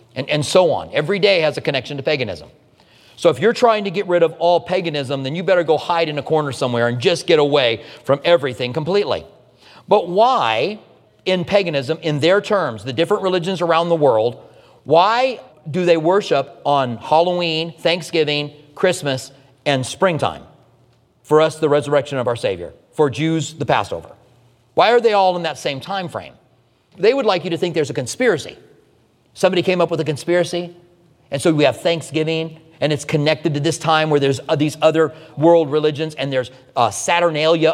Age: 40-59